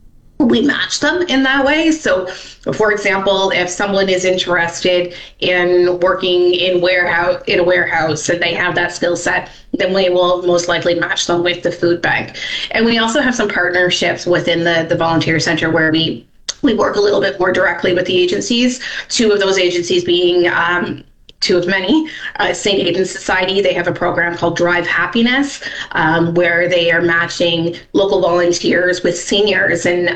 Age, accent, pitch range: 20-39, American, 175-195 Hz